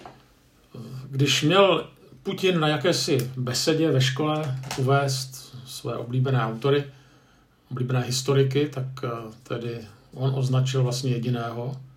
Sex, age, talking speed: male, 50-69, 100 wpm